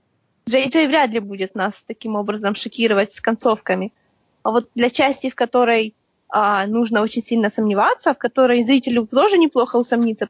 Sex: female